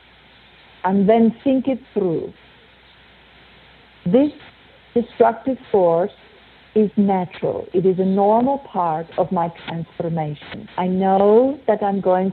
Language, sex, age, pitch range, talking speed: English, female, 50-69, 185-235 Hz, 110 wpm